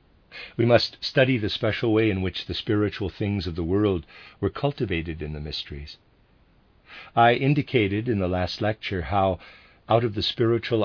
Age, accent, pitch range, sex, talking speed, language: 50-69, American, 85-110 Hz, male, 165 wpm, English